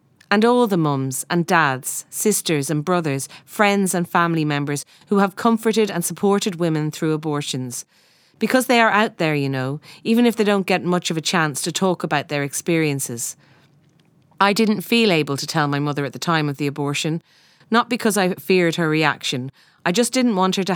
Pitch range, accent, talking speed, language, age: 150-185 Hz, Irish, 195 wpm, English, 30-49